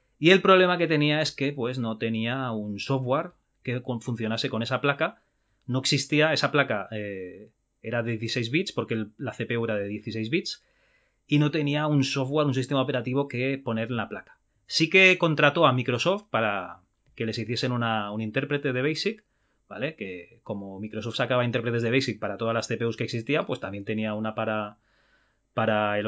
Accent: Spanish